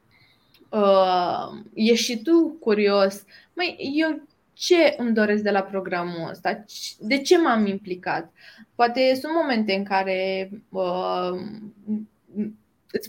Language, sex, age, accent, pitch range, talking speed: Romanian, female, 20-39, native, 195-245 Hz, 105 wpm